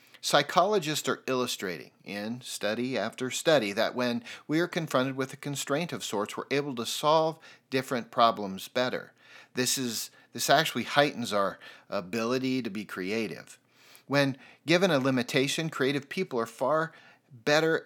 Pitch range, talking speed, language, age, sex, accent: 120-150 Hz, 145 wpm, English, 40-59, male, American